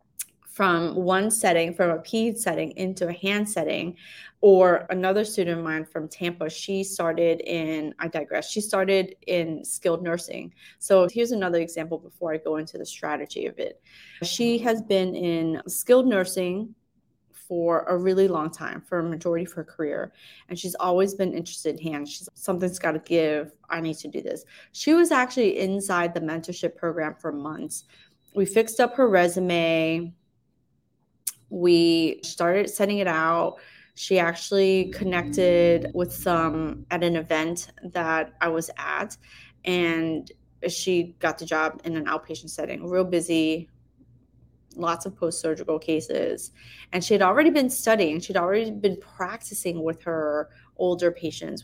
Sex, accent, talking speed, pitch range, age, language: female, American, 155 wpm, 160-190 Hz, 20-39, English